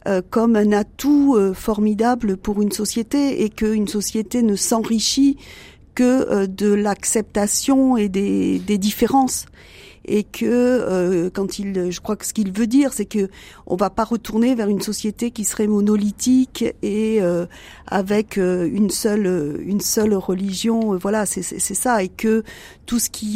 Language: French